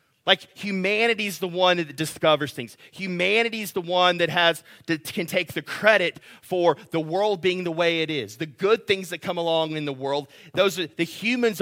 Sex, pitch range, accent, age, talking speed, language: male, 160-205 Hz, American, 30-49, 195 wpm, English